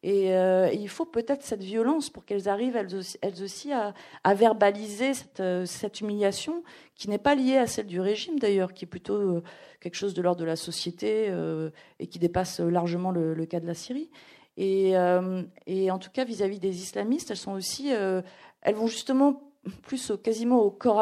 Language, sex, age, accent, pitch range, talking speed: French, female, 40-59, French, 190-245 Hz, 200 wpm